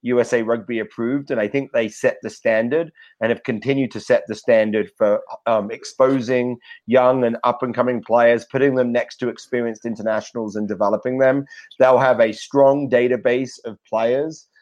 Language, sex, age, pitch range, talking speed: English, male, 30-49, 115-140 Hz, 170 wpm